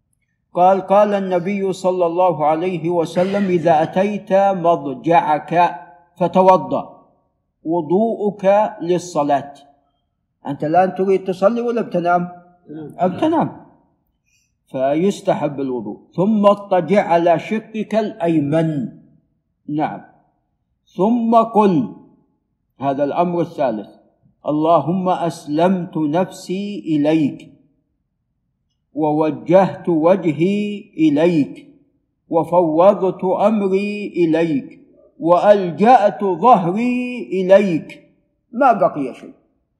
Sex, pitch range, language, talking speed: male, 170-215 Hz, Arabic, 75 wpm